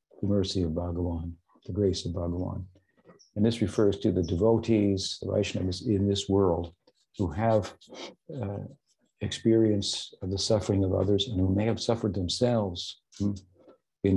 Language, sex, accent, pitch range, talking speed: English, male, American, 90-105 Hz, 150 wpm